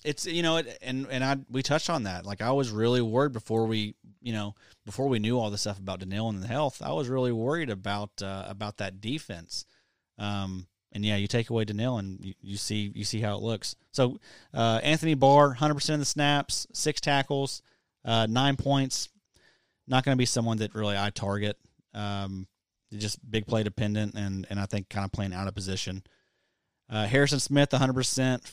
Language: English